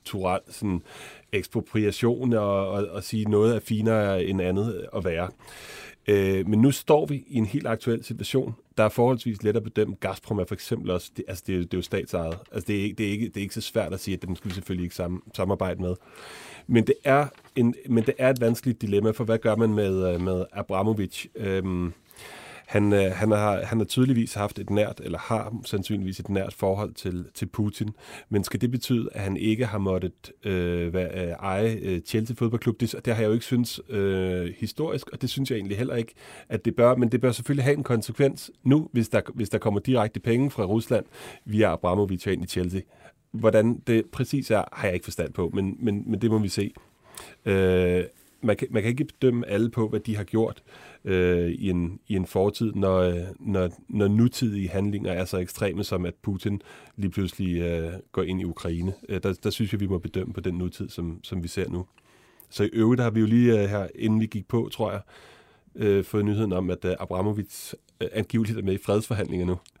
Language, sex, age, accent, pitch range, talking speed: Danish, male, 30-49, native, 95-115 Hz, 205 wpm